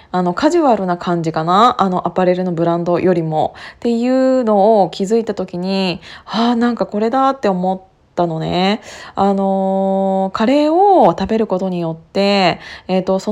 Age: 20-39